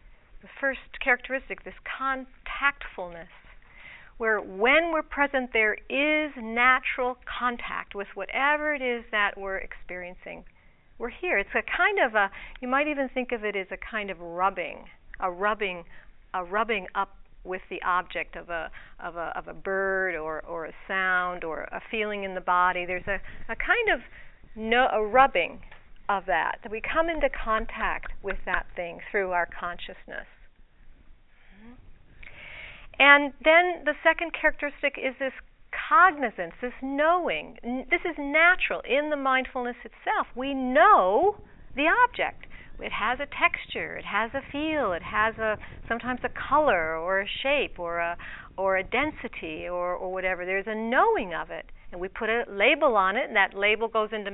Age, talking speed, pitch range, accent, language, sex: 50-69, 165 wpm, 195-285 Hz, American, English, female